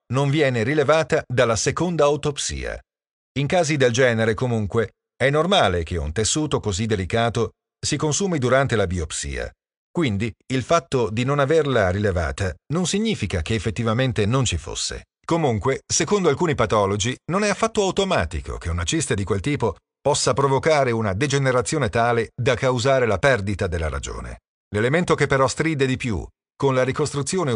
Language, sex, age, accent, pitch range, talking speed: Italian, male, 40-59, native, 105-145 Hz, 155 wpm